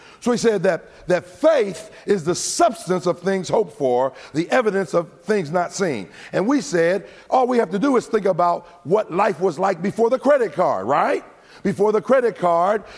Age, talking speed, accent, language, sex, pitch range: 50-69, 200 wpm, American, English, male, 200-255 Hz